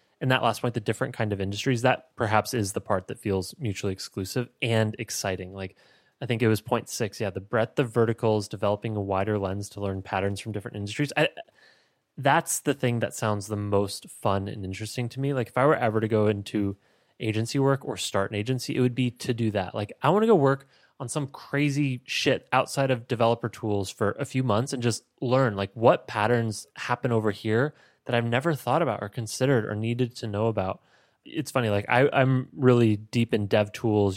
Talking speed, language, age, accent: 215 wpm, English, 20-39, American